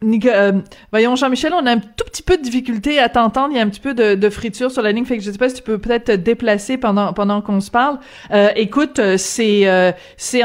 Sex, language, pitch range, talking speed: female, French, 200-240 Hz, 275 wpm